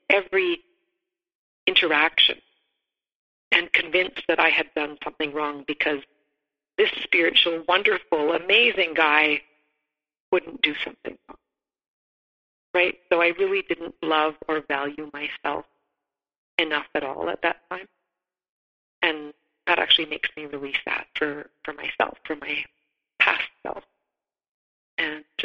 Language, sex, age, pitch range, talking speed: English, female, 40-59, 150-180 Hz, 120 wpm